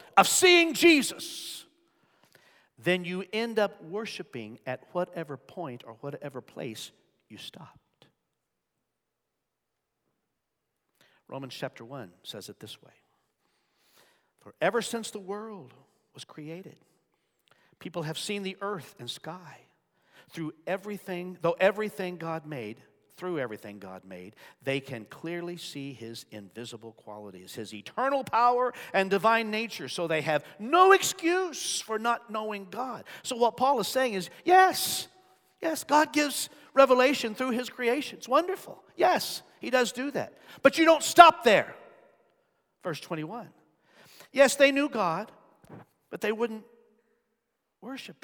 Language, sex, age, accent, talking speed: English, male, 50-69, American, 130 wpm